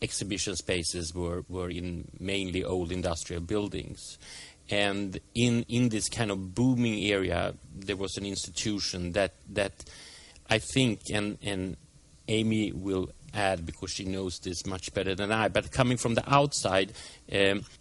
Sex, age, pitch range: male, 30-49, 90-110 Hz